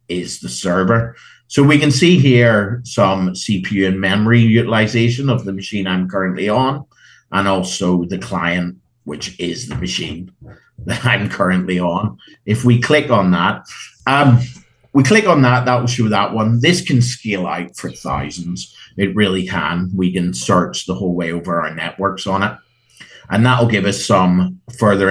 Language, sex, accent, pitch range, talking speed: English, male, British, 95-125 Hz, 175 wpm